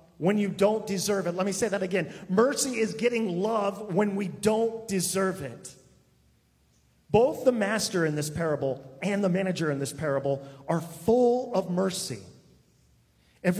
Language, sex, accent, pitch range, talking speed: English, male, American, 140-210 Hz, 160 wpm